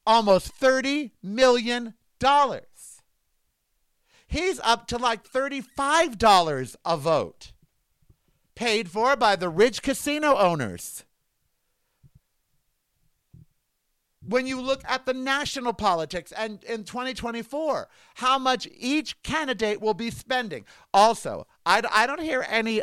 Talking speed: 110 wpm